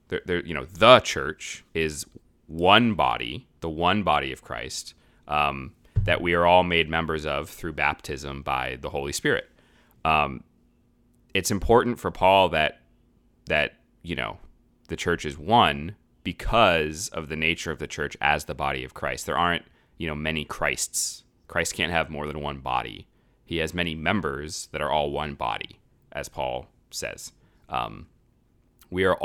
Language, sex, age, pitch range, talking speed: English, male, 30-49, 70-90 Hz, 160 wpm